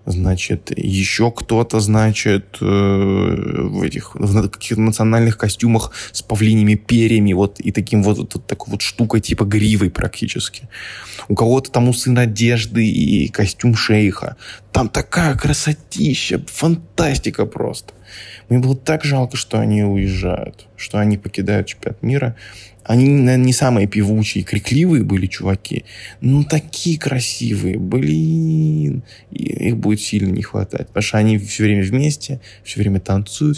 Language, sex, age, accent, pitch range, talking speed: Russian, male, 20-39, native, 105-125 Hz, 135 wpm